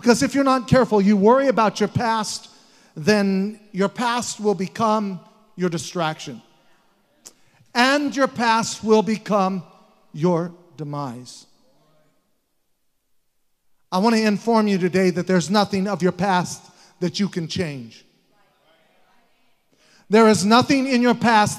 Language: English